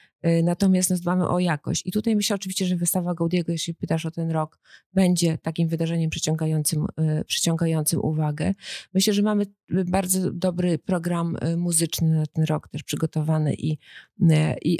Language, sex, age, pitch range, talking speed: Polish, female, 30-49, 160-175 Hz, 155 wpm